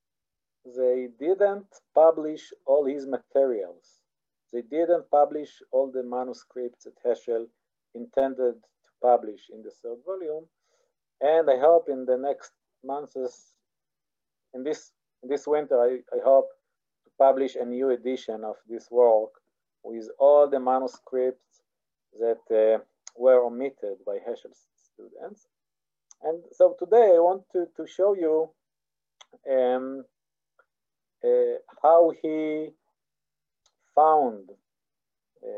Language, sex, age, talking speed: English, male, 50-69, 115 wpm